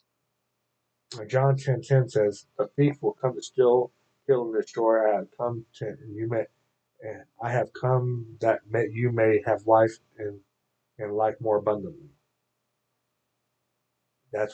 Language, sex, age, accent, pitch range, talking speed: English, male, 50-69, American, 110-135 Hz, 150 wpm